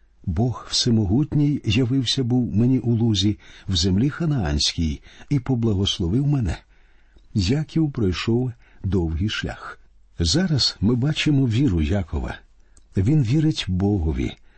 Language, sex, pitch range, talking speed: Ukrainian, male, 95-130 Hz, 105 wpm